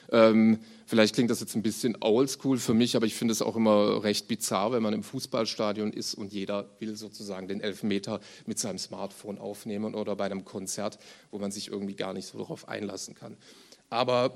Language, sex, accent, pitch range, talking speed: German, male, German, 105-125 Hz, 195 wpm